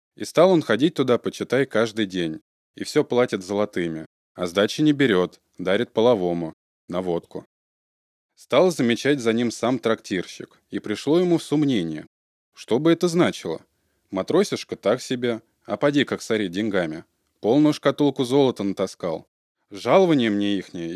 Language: Russian